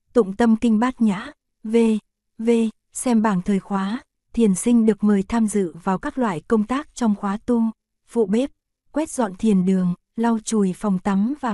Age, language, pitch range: 20-39, Korean, 195-235 Hz